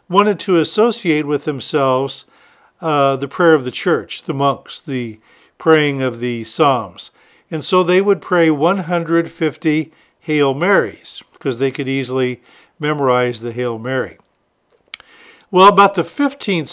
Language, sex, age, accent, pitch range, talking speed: English, male, 50-69, American, 130-170 Hz, 135 wpm